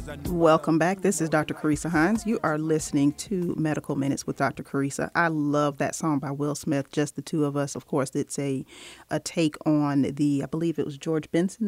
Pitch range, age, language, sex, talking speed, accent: 145-170 Hz, 40-59, English, female, 215 wpm, American